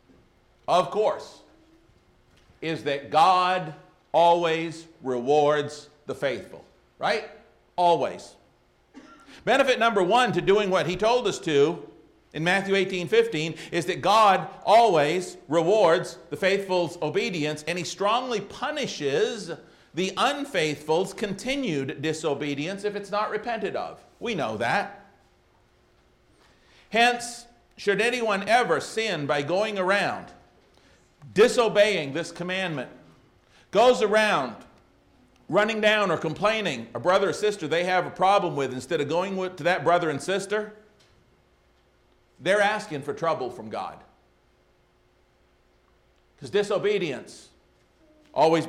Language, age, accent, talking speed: English, 50-69, American, 115 wpm